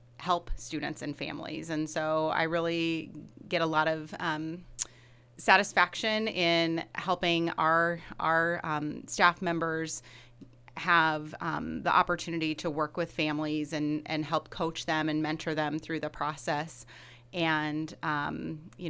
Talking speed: 135 wpm